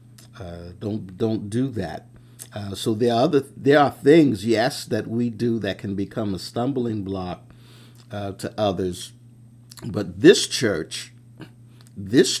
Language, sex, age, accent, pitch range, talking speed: English, male, 50-69, American, 100-120 Hz, 145 wpm